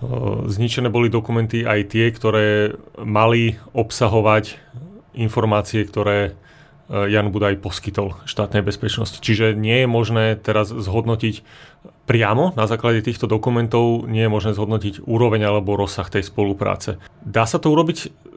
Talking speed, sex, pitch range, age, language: 125 wpm, male, 110-120 Hz, 30-49, Slovak